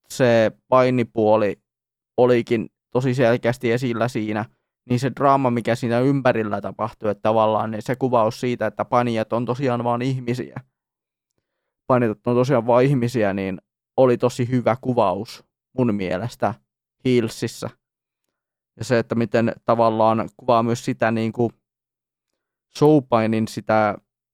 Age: 20-39